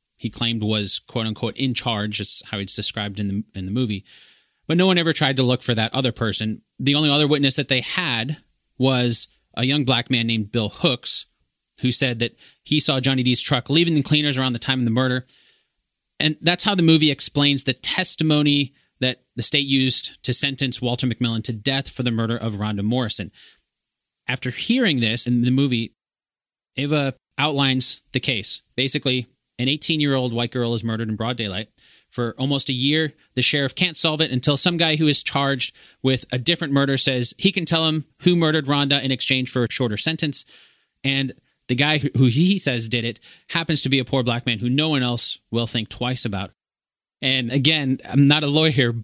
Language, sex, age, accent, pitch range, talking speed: English, male, 30-49, American, 115-145 Hz, 200 wpm